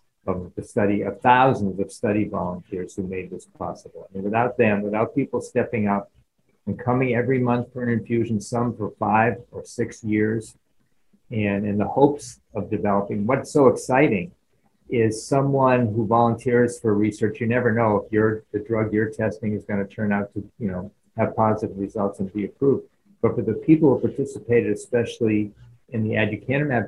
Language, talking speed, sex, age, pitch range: English, 180 wpm, male, 50-69, 100-120 Hz